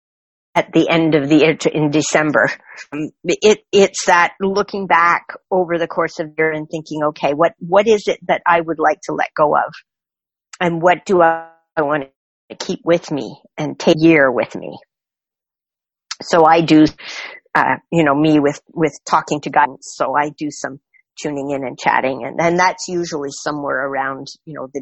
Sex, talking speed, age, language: female, 195 wpm, 50-69, English